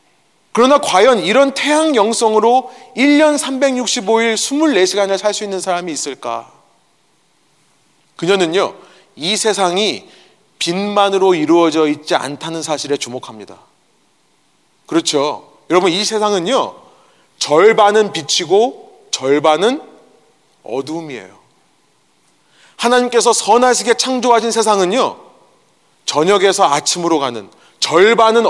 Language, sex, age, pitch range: Korean, male, 30-49, 170-235 Hz